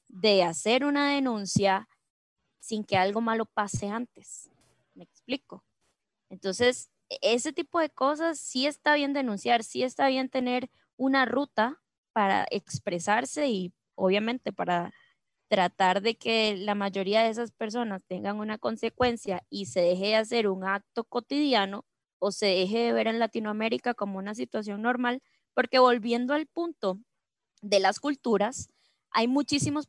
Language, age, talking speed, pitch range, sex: Spanish, 10-29, 145 wpm, 195-250 Hz, female